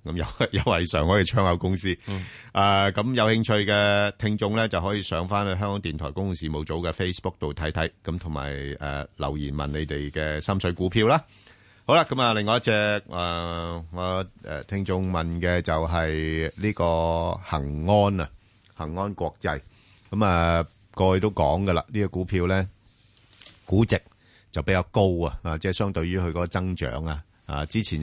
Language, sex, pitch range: Chinese, male, 80-100 Hz